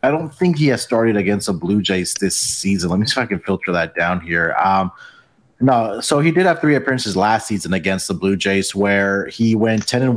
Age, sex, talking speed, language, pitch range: 30-49, male, 240 wpm, English, 100-120 Hz